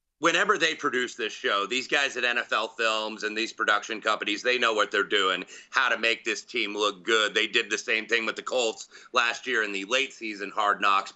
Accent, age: American, 30-49